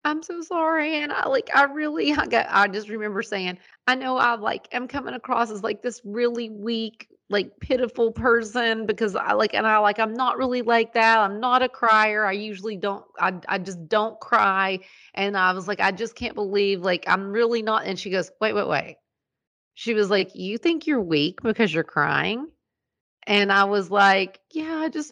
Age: 30-49